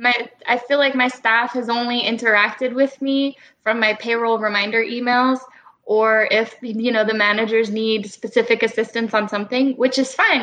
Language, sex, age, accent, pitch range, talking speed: English, female, 10-29, American, 210-250 Hz, 165 wpm